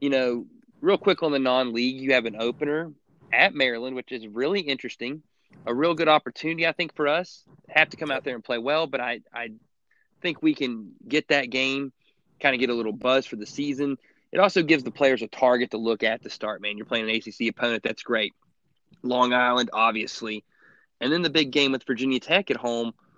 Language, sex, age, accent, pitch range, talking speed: English, male, 20-39, American, 115-140 Hz, 215 wpm